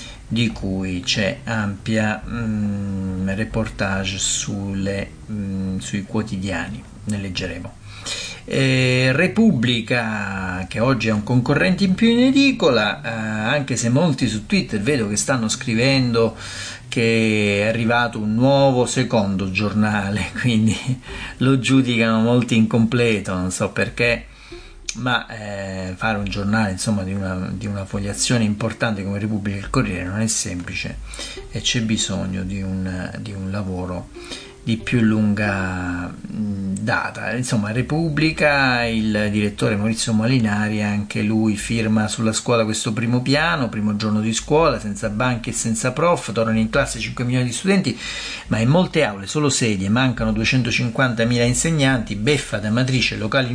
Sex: male